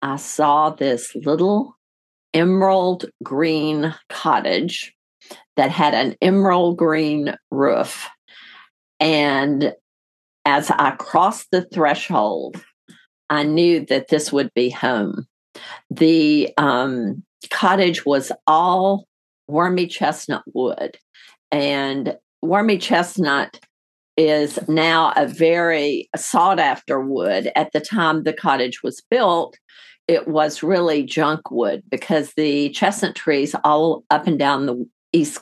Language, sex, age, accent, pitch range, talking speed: English, female, 50-69, American, 145-175 Hz, 110 wpm